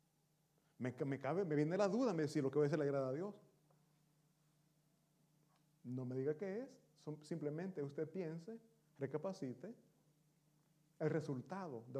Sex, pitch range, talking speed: male, 140-160 Hz, 160 wpm